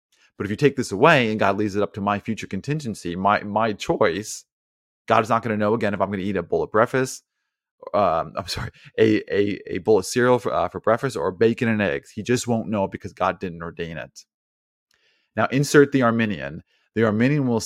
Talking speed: 230 wpm